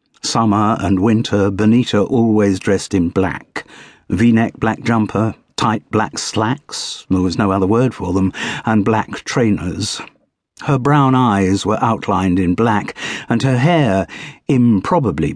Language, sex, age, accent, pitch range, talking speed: English, male, 50-69, British, 95-125 Hz, 135 wpm